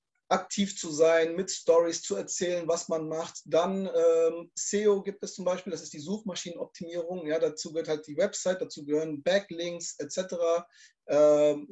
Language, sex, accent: German, male, German